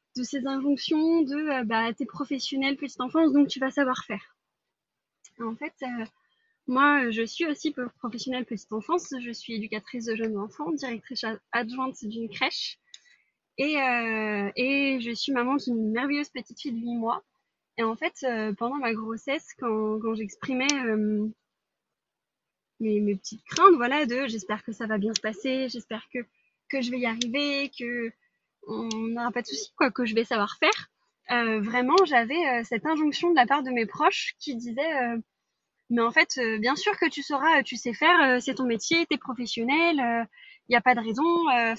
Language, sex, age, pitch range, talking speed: French, female, 20-39, 230-295 Hz, 195 wpm